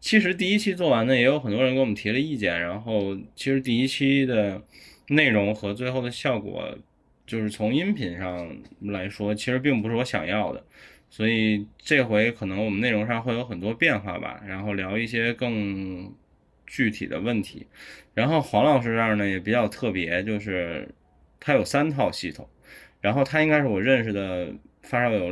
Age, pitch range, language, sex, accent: 20-39, 100-130 Hz, Chinese, male, native